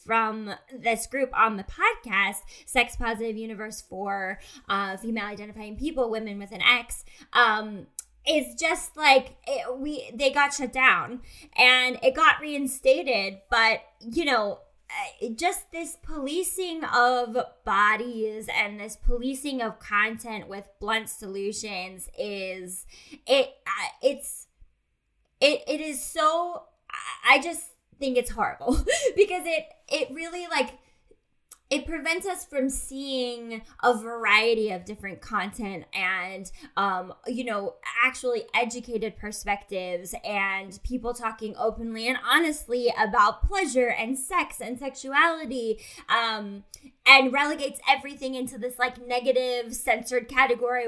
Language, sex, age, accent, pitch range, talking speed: English, female, 10-29, American, 215-275 Hz, 125 wpm